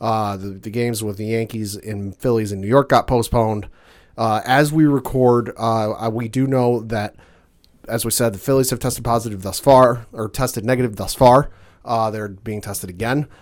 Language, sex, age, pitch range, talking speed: English, male, 30-49, 110-130 Hz, 190 wpm